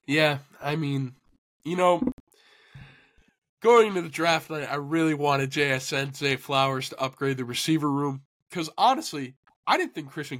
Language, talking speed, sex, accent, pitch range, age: English, 165 wpm, male, American, 130-155 Hz, 20-39